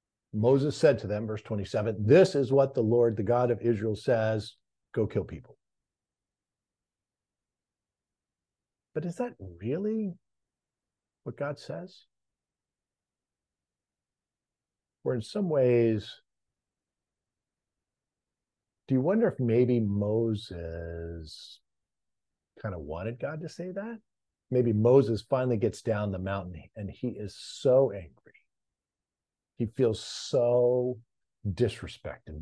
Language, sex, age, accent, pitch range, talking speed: English, male, 50-69, American, 95-130 Hz, 110 wpm